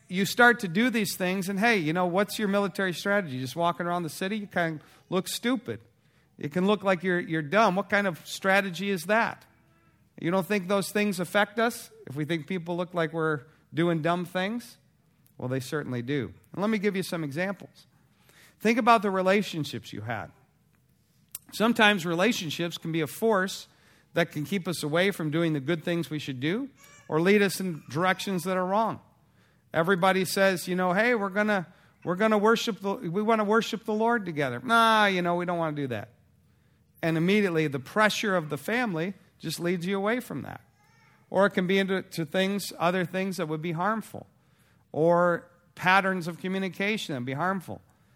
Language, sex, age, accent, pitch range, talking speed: English, male, 50-69, American, 160-205 Hz, 195 wpm